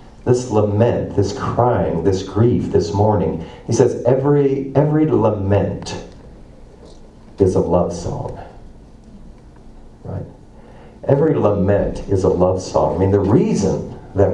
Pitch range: 100-135 Hz